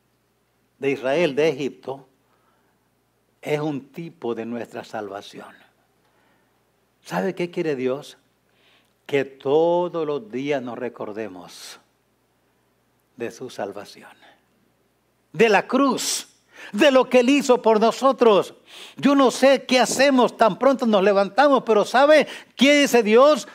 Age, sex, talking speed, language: 60-79, male, 120 wpm, English